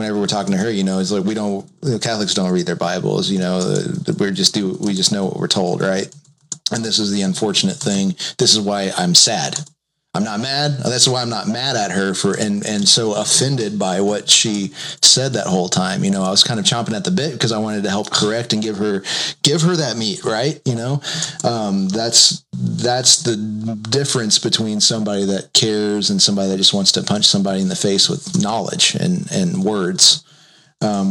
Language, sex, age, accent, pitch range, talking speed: English, male, 30-49, American, 100-150 Hz, 220 wpm